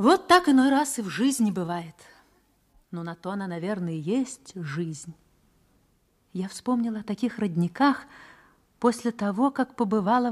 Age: 40-59